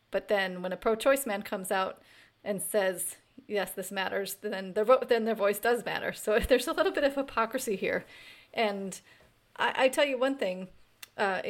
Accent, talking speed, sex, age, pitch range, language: American, 170 wpm, female, 30-49, 190-225 Hz, English